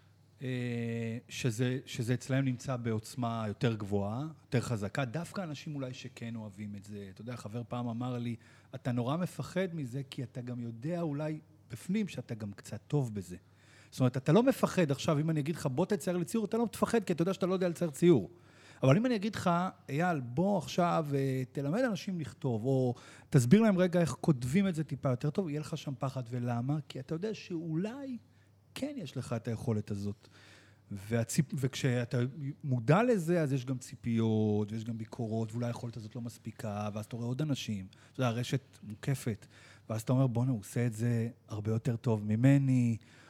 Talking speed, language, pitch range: 175 wpm, Hebrew, 115-165 Hz